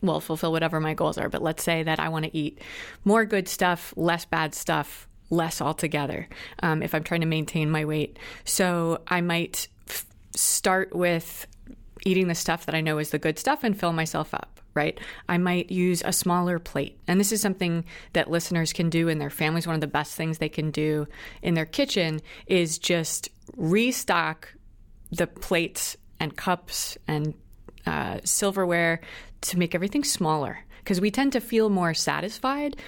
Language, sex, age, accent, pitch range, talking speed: English, female, 30-49, American, 160-195 Hz, 180 wpm